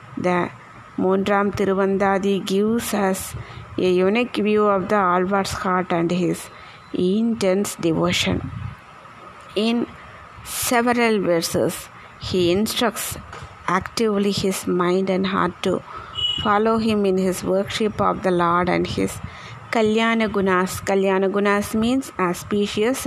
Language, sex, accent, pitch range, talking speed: Tamil, female, native, 180-210 Hz, 110 wpm